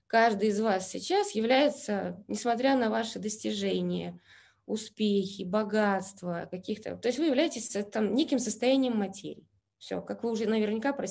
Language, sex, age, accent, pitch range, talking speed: Russian, female, 20-39, native, 205-270 Hz, 140 wpm